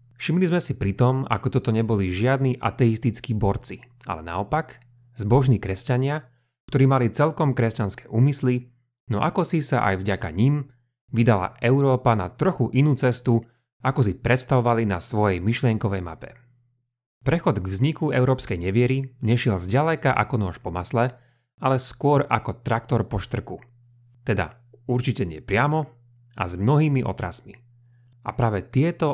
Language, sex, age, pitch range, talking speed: Slovak, male, 30-49, 110-130 Hz, 140 wpm